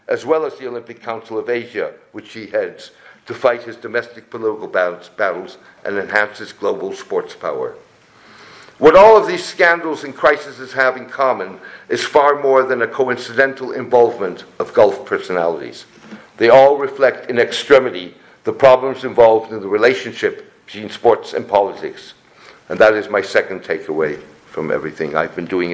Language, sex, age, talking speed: English, male, 60-79, 160 wpm